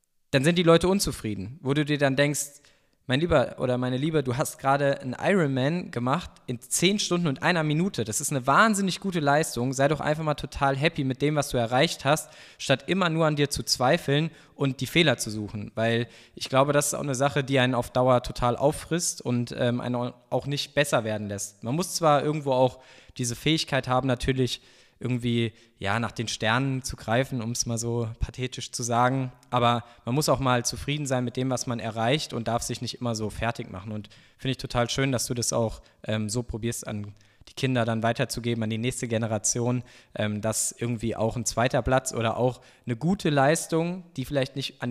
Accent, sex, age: German, male, 20-39